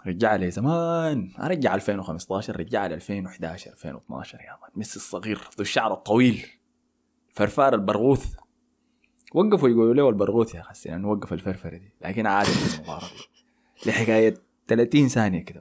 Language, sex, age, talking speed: Arabic, male, 20-39, 125 wpm